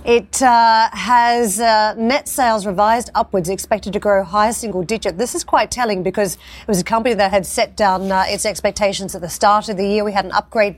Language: English